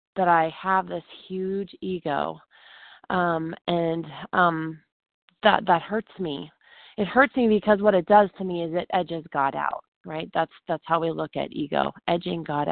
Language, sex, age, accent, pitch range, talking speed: English, female, 20-39, American, 170-195 Hz, 175 wpm